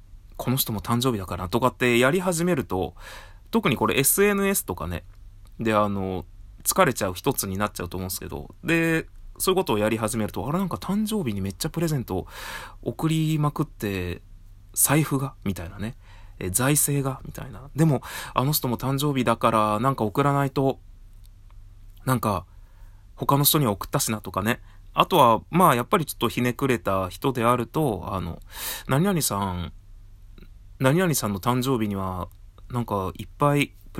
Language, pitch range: Japanese, 95-135 Hz